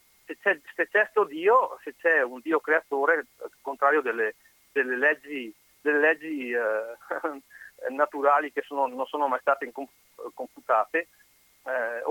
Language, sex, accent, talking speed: Italian, male, native, 135 wpm